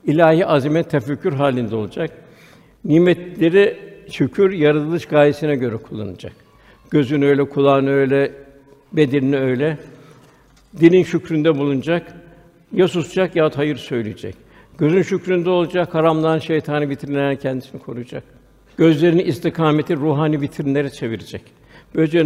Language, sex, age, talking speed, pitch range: Turkish, male, 60-79, 110 wpm, 145-165 Hz